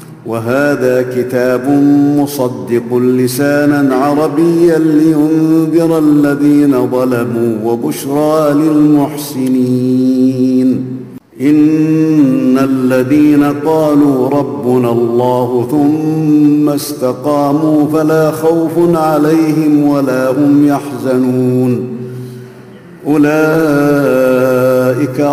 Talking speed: 55 wpm